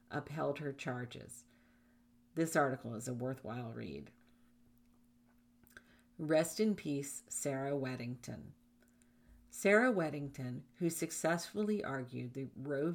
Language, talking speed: English, 95 wpm